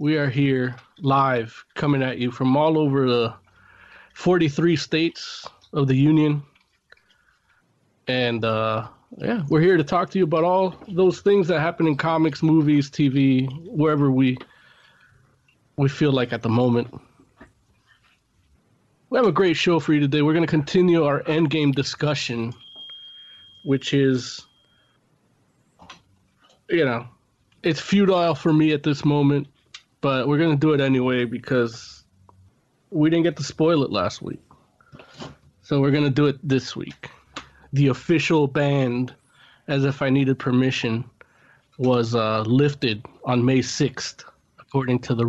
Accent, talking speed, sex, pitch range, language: American, 145 wpm, male, 125-155 Hz, English